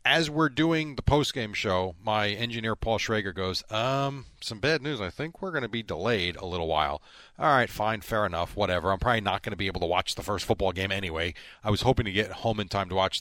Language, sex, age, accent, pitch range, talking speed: English, male, 40-59, American, 95-120 Hz, 250 wpm